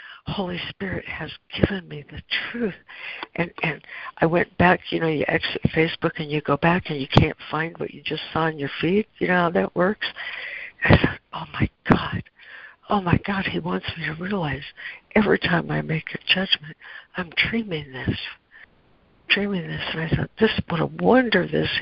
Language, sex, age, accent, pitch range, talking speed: English, female, 60-79, American, 145-195 Hz, 195 wpm